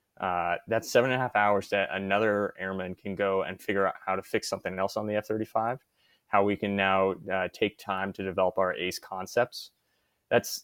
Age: 20-39